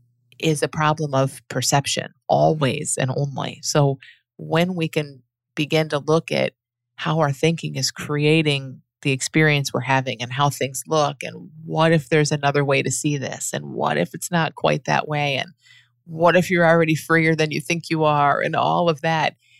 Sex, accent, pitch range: female, American, 130-155 Hz